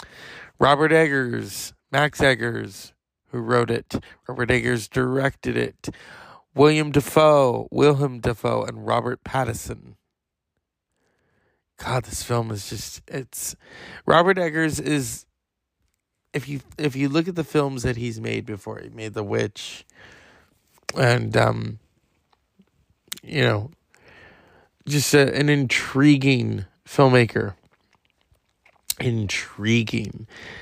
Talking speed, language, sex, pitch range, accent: 100 wpm, English, male, 115-145 Hz, American